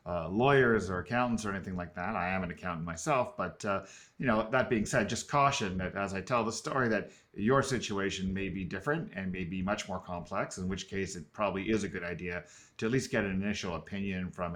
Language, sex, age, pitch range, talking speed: English, male, 40-59, 95-120 Hz, 235 wpm